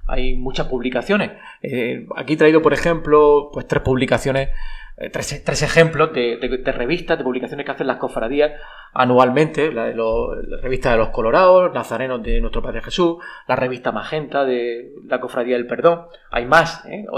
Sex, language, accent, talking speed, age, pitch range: male, Spanish, Spanish, 175 wpm, 30-49, 125-165 Hz